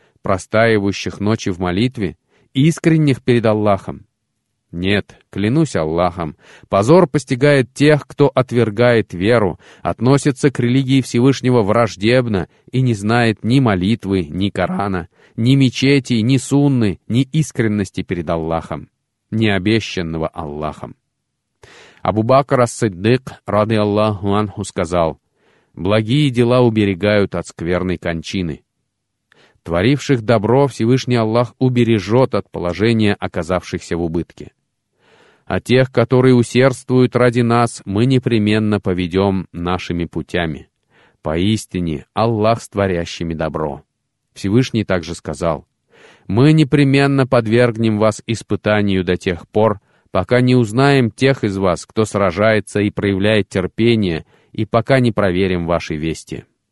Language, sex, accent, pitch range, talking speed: Russian, male, native, 90-125 Hz, 110 wpm